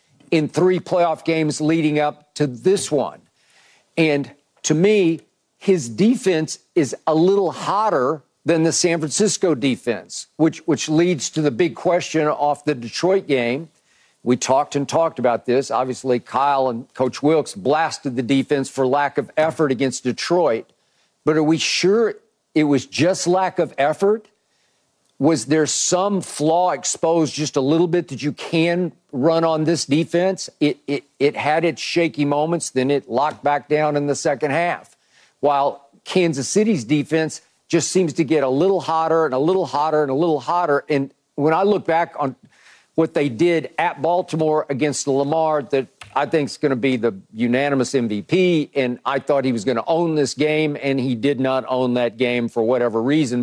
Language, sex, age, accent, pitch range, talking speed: English, male, 50-69, American, 135-165 Hz, 180 wpm